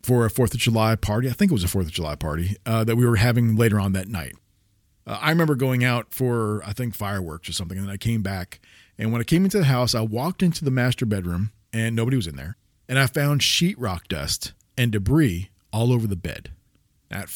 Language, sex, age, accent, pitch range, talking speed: English, male, 40-59, American, 100-135 Hz, 240 wpm